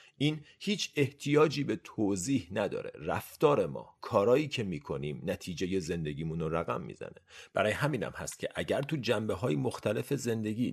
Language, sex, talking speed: Persian, male, 145 wpm